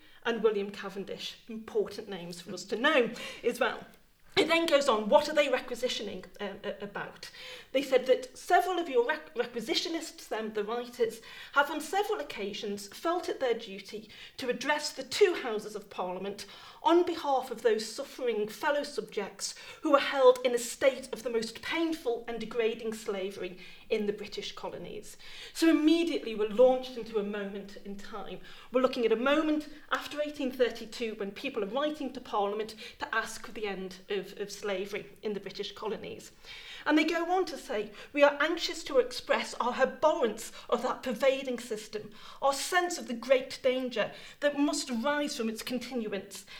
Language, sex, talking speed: English, female, 175 wpm